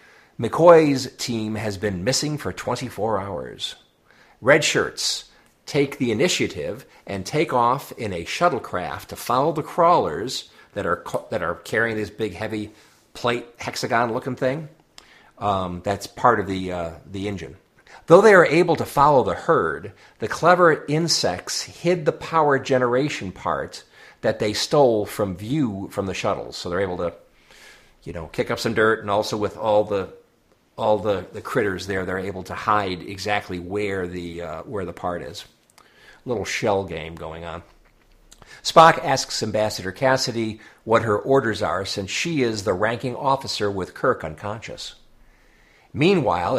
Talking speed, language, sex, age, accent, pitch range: 160 wpm, English, male, 50-69, American, 100-135 Hz